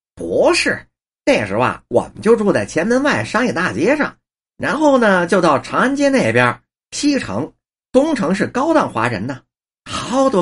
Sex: male